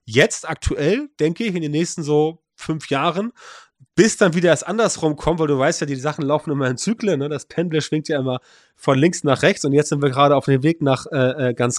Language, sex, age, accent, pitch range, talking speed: German, male, 30-49, German, 130-165 Hz, 240 wpm